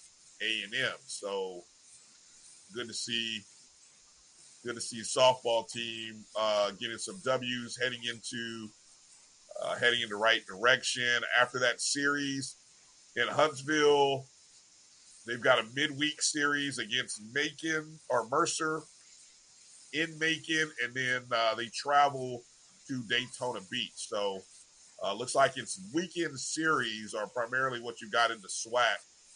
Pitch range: 120-155 Hz